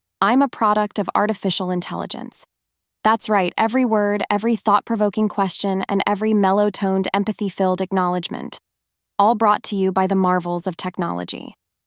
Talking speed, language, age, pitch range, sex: 135 wpm, German, 20-39, 190-225 Hz, female